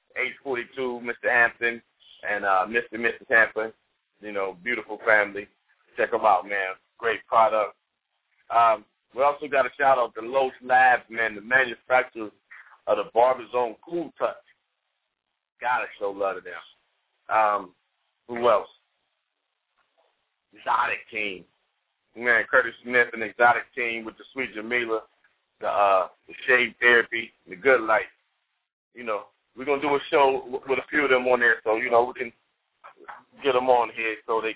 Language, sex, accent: English, male, American